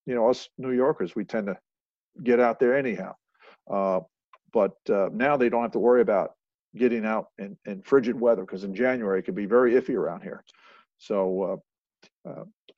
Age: 50-69